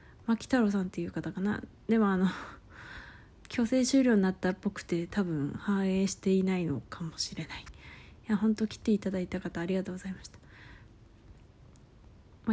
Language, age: Japanese, 20-39